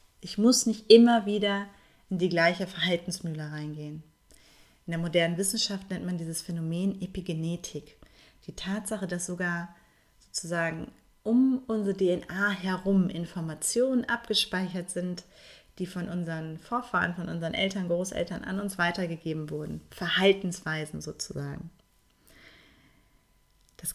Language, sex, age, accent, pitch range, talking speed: German, female, 30-49, German, 170-205 Hz, 115 wpm